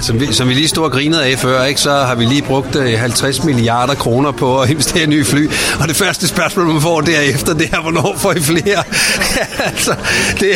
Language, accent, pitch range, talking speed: Danish, native, 140-175 Hz, 225 wpm